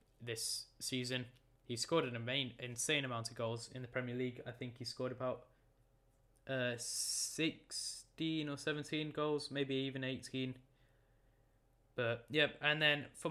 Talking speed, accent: 145 wpm, British